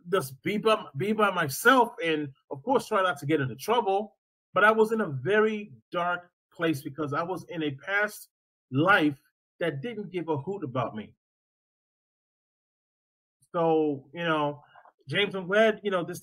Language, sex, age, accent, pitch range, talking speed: English, male, 30-49, American, 160-215 Hz, 165 wpm